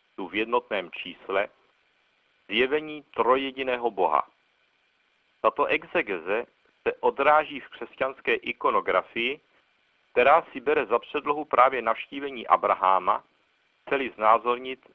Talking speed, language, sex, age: 90 wpm, Czech, male, 60-79